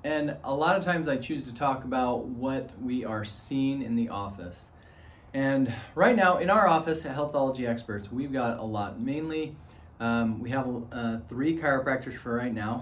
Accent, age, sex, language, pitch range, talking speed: American, 20-39, male, English, 115-145 Hz, 185 wpm